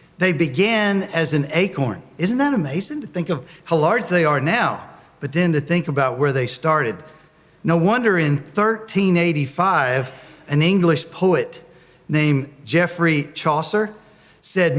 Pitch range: 145-190 Hz